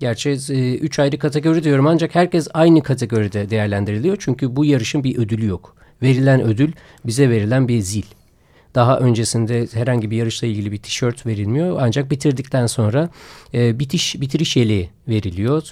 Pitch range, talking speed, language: 115-140 Hz, 155 wpm, Turkish